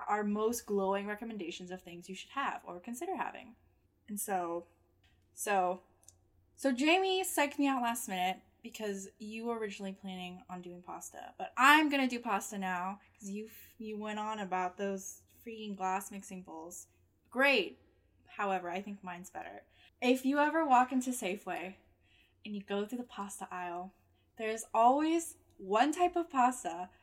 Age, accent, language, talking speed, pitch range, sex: 10-29, American, English, 160 wpm, 195-265 Hz, female